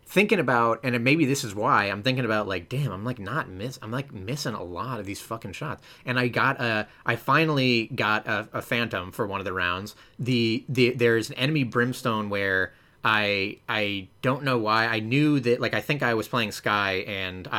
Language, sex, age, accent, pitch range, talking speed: English, male, 30-49, American, 105-130 Hz, 215 wpm